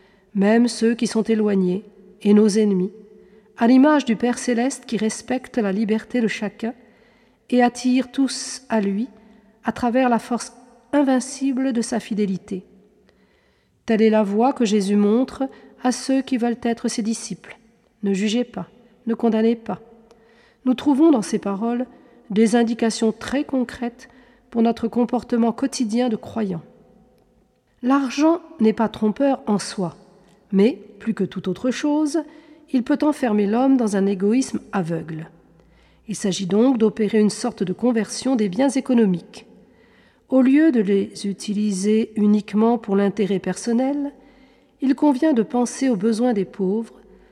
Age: 40-59